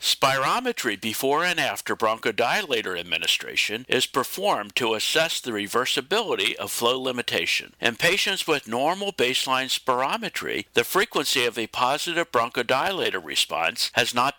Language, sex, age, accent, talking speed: English, male, 60-79, American, 125 wpm